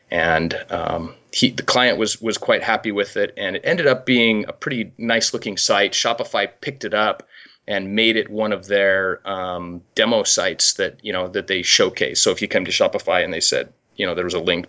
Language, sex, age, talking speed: English, male, 30-49, 225 wpm